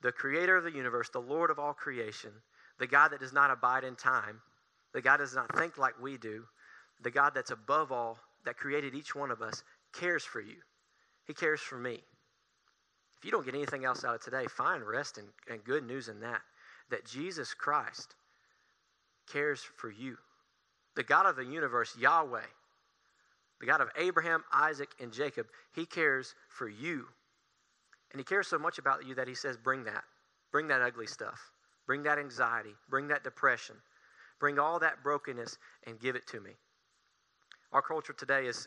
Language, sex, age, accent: English, male, 40-59, American